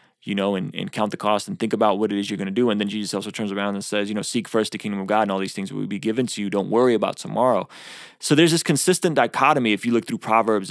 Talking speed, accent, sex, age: 315 wpm, American, male, 20-39